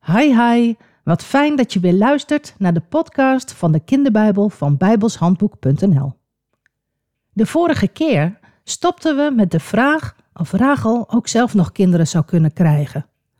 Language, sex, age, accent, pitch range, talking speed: Dutch, female, 50-69, Dutch, 145-235 Hz, 150 wpm